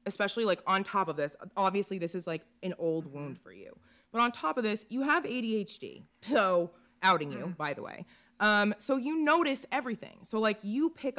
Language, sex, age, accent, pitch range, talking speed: English, female, 20-39, American, 180-240 Hz, 205 wpm